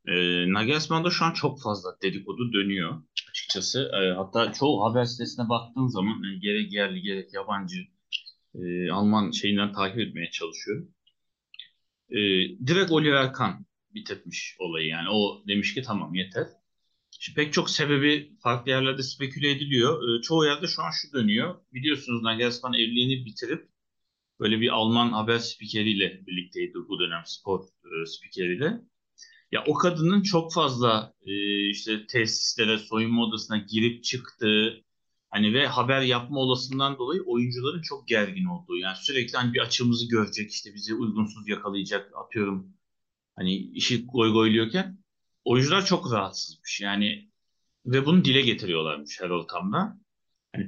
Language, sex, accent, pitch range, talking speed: Turkish, male, native, 105-150 Hz, 135 wpm